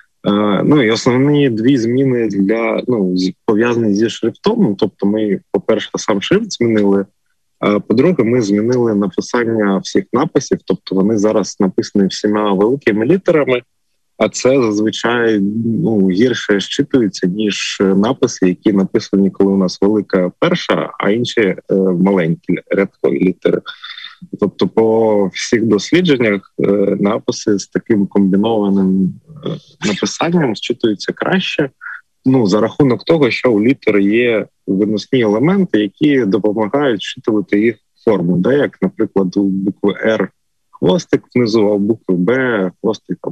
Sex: male